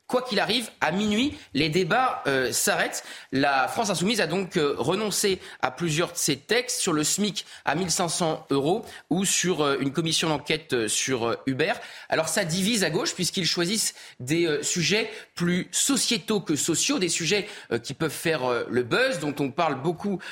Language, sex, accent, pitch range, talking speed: French, male, French, 145-195 Hz, 185 wpm